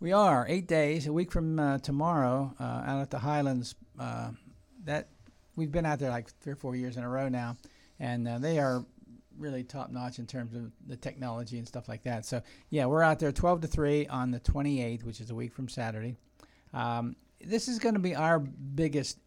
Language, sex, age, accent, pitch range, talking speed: English, male, 50-69, American, 120-150 Hz, 215 wpm